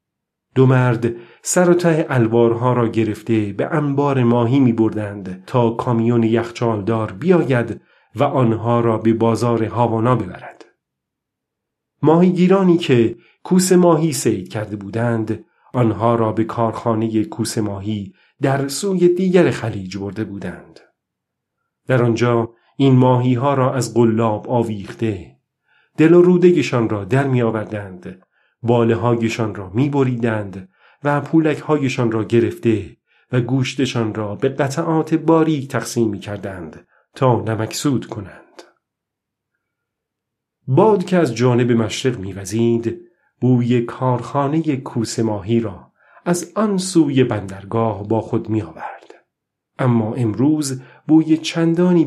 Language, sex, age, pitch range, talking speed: Persian, male, 40-59, 110-140 Hz, 110 wpm